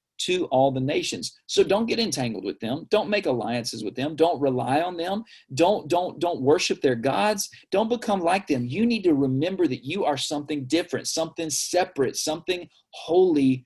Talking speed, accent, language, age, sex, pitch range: 185 wpm, American, English, 40-59, male, 130-195 Hz